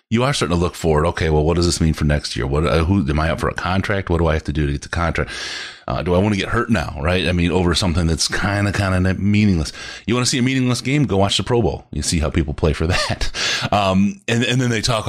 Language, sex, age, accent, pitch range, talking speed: English, male, 30-49, American, 75-95 Hz, 295 wpm